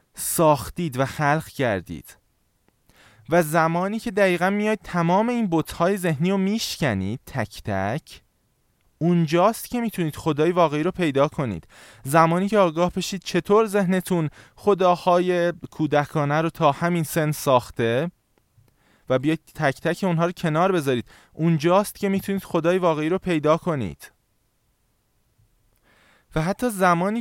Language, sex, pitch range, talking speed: Persian, male, 140-185 Hz, 125 wpm